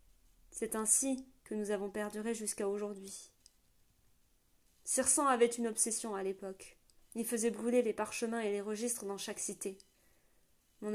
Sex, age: female, 30-49